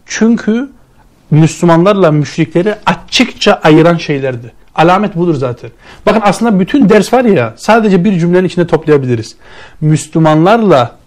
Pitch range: 155-210 Hz